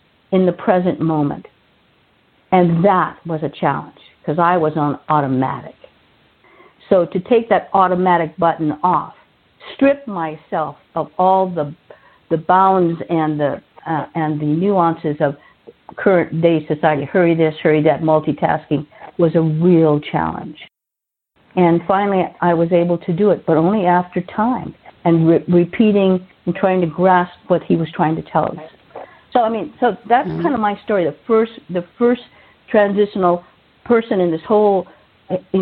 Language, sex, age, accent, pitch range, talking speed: English, female, 50-69, American, 160-195 Hz, 155 wpm